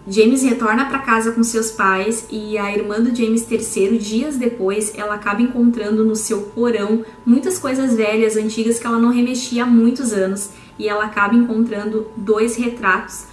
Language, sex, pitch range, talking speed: Portuguese, female, 205-235 Hz, 170 wpm